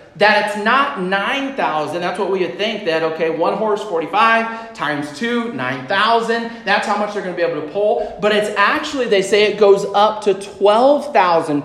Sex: male